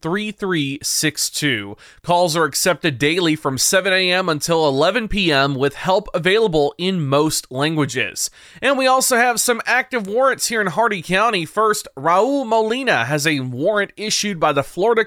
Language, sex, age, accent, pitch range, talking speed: English, male, 30-49, American, 150-205 Hz, 165 wpm